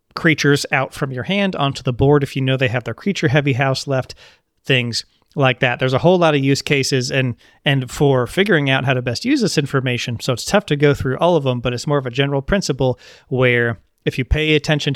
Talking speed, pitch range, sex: 240 wpm, 130-150 Hz, male